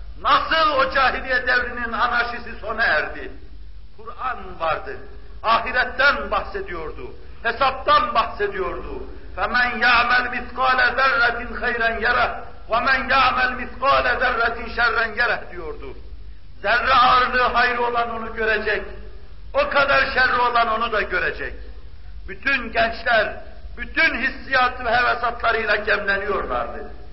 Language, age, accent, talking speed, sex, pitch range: Turkish, 60-79, native, 100 wpm, male, 230-270 Hz